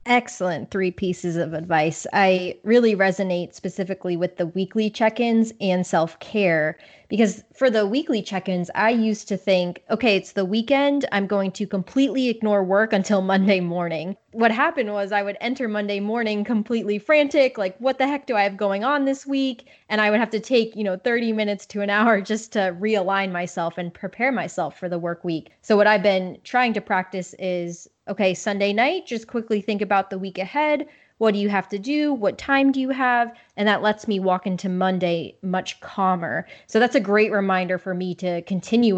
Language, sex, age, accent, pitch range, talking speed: English, female, 20-39, American, 185-235 Hz, 205 wpm